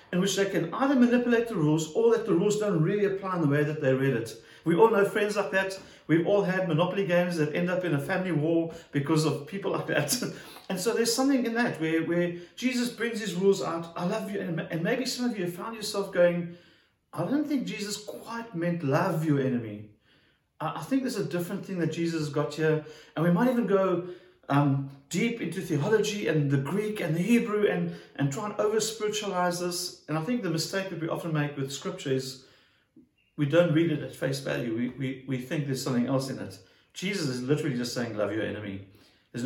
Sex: male